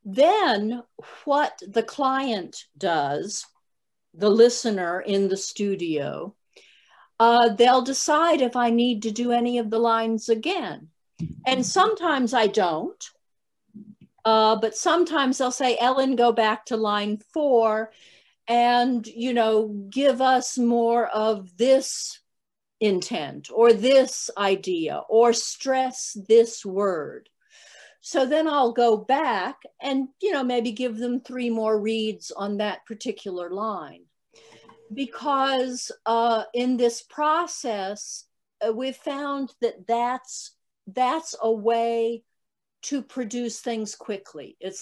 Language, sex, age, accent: English, female, 50-69, American